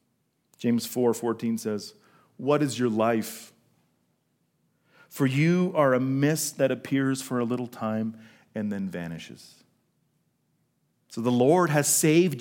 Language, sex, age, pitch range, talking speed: English, male, 40-59, 125-175 Hz, 130 wpm